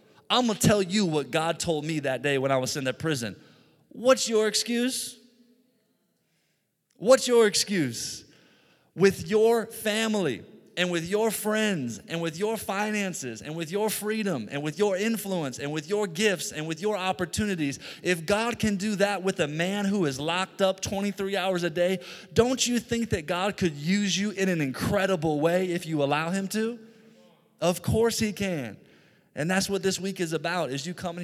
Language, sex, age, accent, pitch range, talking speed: English, male, 30-49, American, 140-195 Hz, 185 wpm